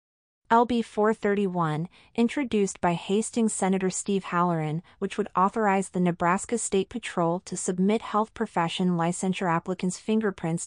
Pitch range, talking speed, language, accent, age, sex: 170-205 Hz, 120 wpm, English, American, 30-49, female